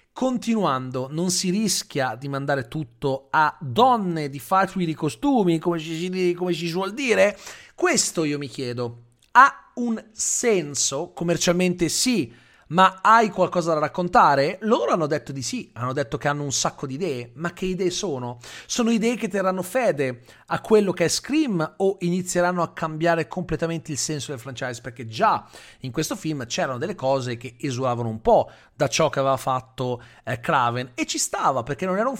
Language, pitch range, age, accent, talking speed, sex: Italian, 135-190 Hz, 40-59, native, 175 wpm, male